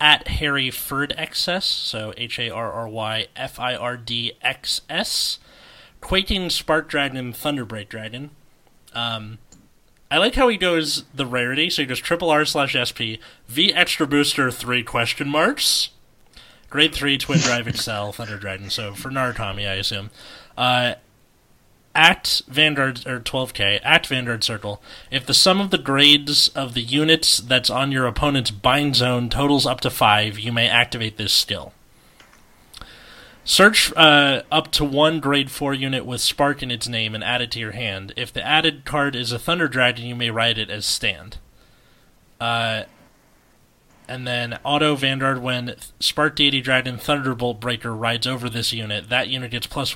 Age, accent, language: 30-49, American, English